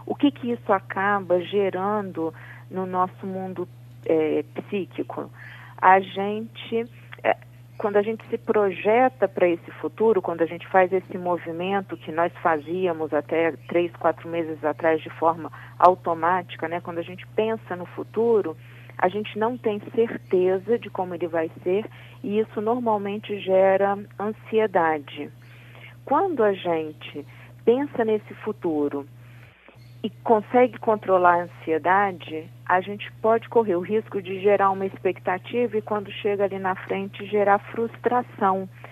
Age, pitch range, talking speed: 40-59, 160-215 Hz, 140 wpm